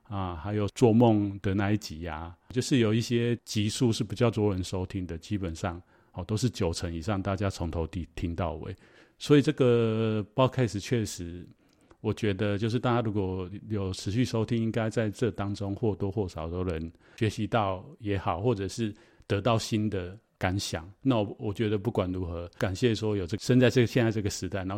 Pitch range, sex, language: 95-115 Hz, male, Chinese